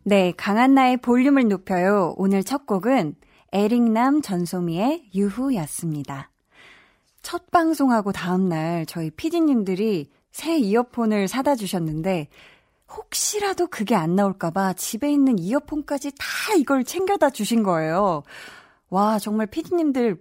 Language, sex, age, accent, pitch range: Korean, female, 20-39, native, 190-270 Hz